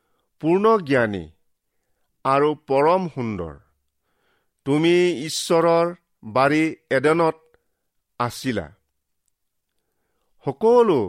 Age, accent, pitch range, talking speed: 50-69, Indian, 125-175 Hz, 60 wpm